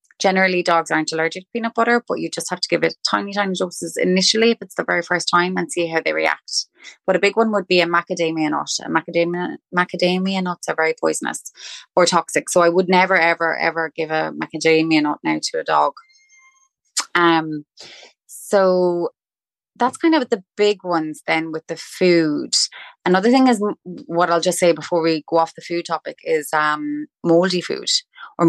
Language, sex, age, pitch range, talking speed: English, female, 20-39, 160-195 Hz, 195 wpm